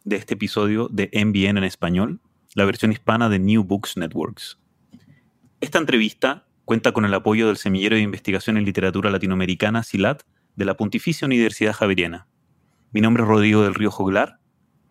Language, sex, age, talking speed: Spanish, male, 30-49, 160 wpm